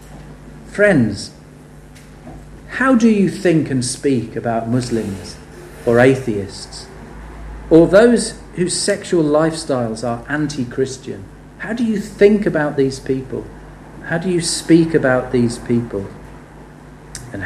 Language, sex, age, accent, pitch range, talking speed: English, male, 40-59, British, 120-195 Hz, 115 wpm